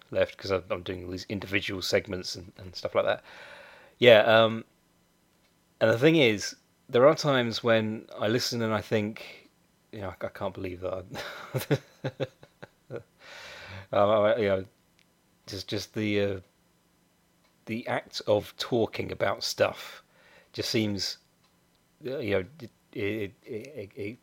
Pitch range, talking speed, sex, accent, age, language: 95-120 Hz, 135 wpm, male, British, 30-49, English